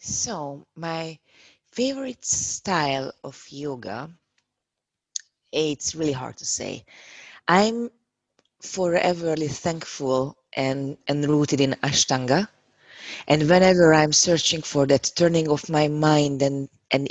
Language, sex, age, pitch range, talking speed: English, female, 20-39, 135-160 Hz, 105 wpm